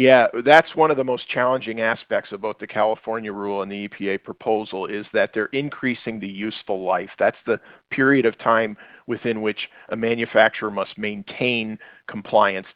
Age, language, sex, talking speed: 50-69, English, male, 170 wpm